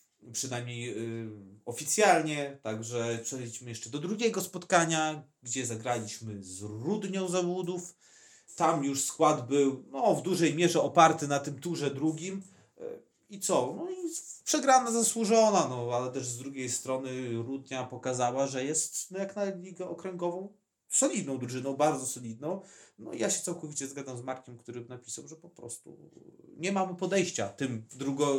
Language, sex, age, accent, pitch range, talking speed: Polish, male, 30-49, native, 115-180 Hz, 150 wpm